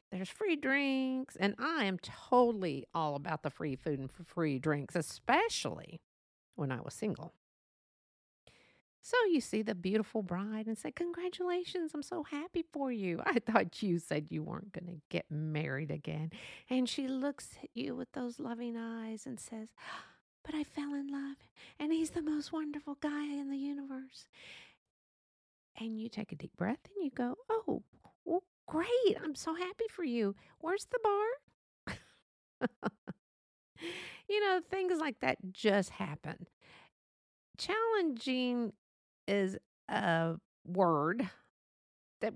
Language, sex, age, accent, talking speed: English, female, 50-69, American, 145 wpm